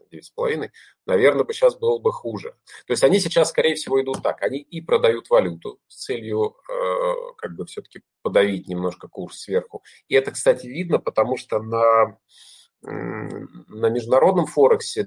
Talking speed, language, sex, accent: 160 wpm, Russian, male, native